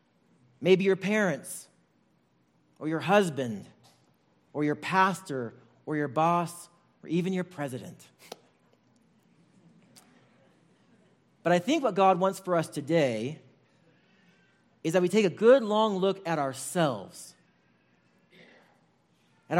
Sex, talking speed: male, 110 wpm